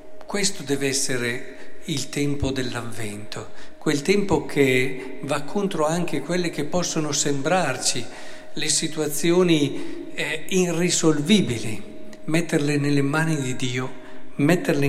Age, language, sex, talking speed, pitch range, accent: 50-69, Italian, male, 105 wpm, 130-165 Hz, native